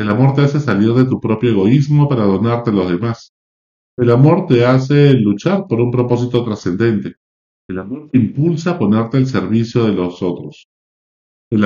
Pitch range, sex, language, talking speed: 100-135 Hz, male, Spanish, 180 wpm